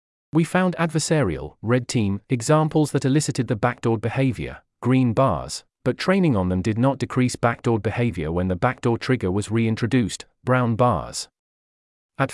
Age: 40-59